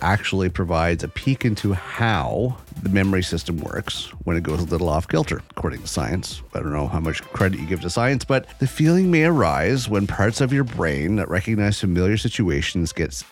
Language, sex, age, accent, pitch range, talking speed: English, male, 30-49, American, 80-110 Hz, 200 wpm